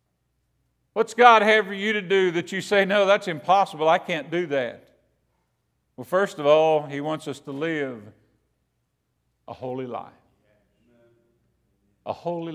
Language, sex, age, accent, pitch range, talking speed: English, male, 50-69, American, 115-180 Hz, 150 wpm